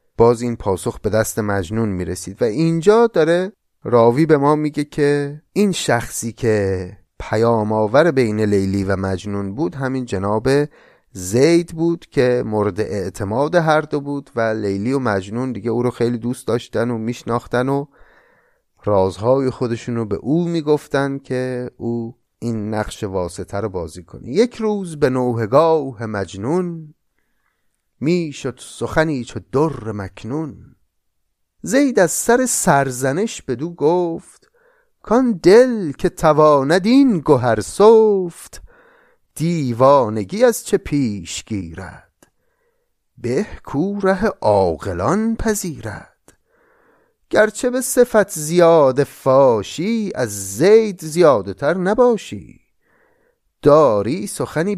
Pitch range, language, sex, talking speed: 110-180 Hz, Persian, male, 115 wpm